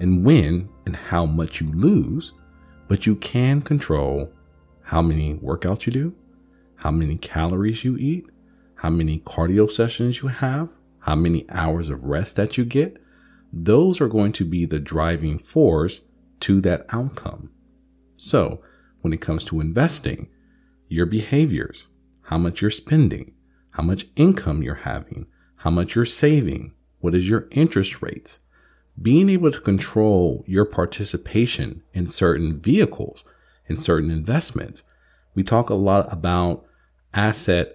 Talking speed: 145 wpm